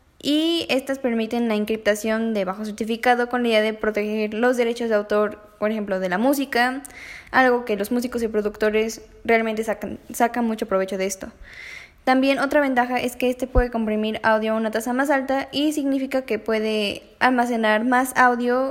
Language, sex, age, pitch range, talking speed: Spanish, female, 10-29, 205-250 Hz, 180 wpm